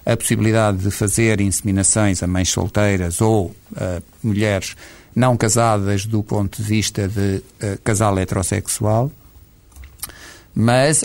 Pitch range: 105-130 Hz